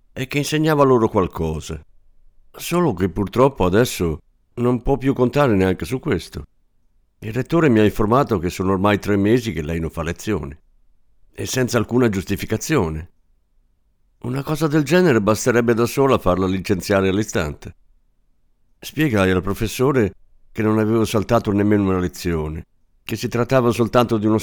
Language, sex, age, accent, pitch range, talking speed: Italian, male, 50-69, native, 90-125 Hz, 150 wpm